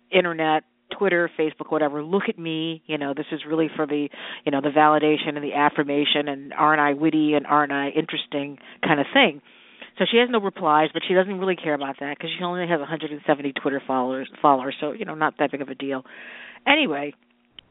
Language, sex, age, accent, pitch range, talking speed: English, female, 40-59, American, 145-175 Hz, 210 wpm